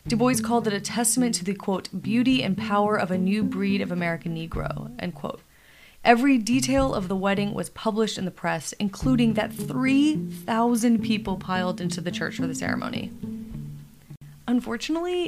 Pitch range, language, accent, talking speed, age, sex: 180-235 Hz, English, American, 170 wpm, 20-39, female